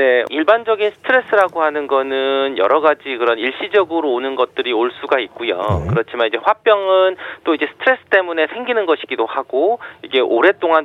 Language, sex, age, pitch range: Korean, male, 40-59, 130-195 Hz